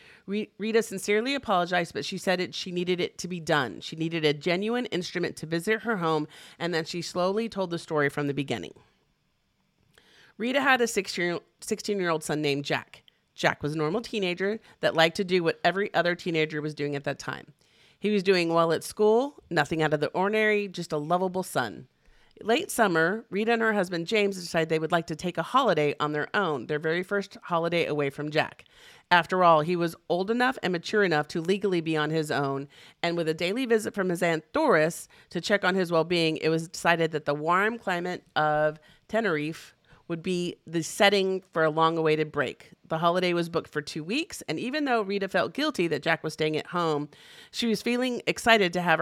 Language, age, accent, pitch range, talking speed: English, 40-59, American, 160-200 Hz, 205 wpm